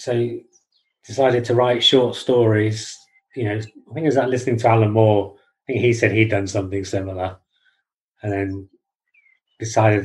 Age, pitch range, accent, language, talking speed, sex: 30-49, 105-120 Hz, British, English, 165 wpm, male